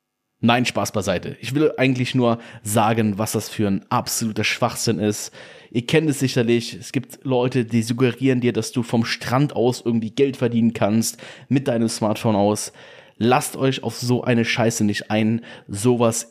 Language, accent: German, German